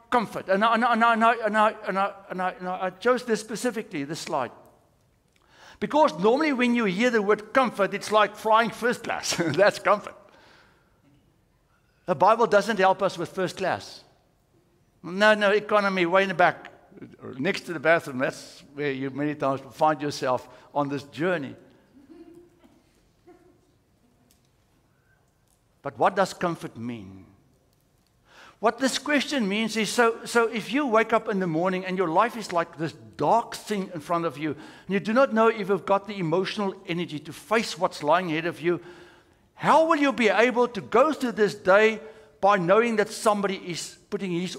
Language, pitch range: English, 175-225 Hz